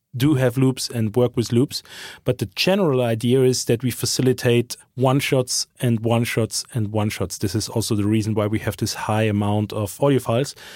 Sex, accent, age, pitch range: male, German, 30-49, 120-145 Hz